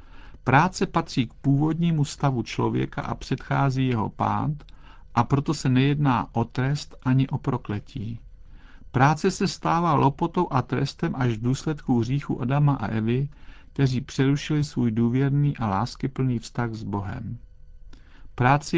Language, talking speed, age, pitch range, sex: Czech, 135 wpm, 50-69, 115-145 Hz, male